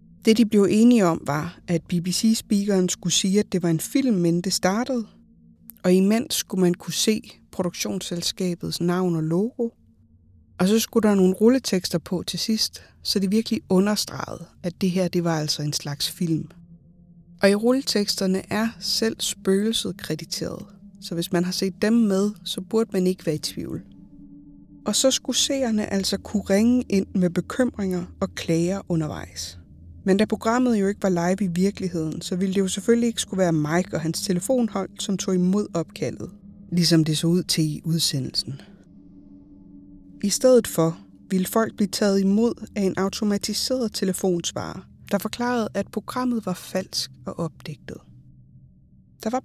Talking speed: 165 wpm